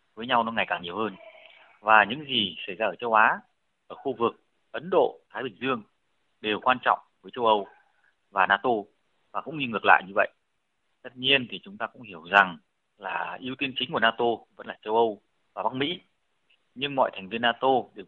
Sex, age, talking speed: male, 20-39, 215 wpm